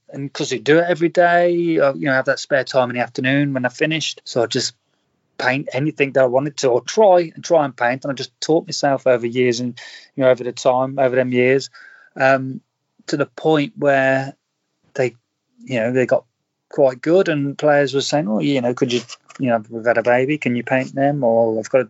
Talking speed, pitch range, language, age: 235 wpm, 125-140 Hz, English, 20-39